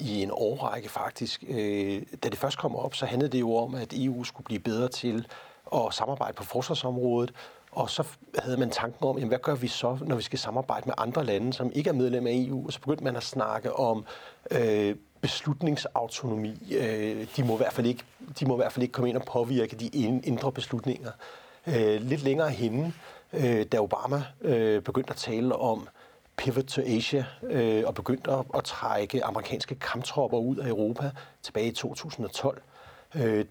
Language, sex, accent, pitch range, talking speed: Danish, male, native, 115-135 Hz, 170 wpm